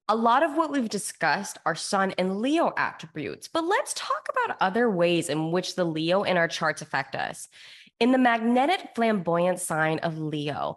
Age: 20-39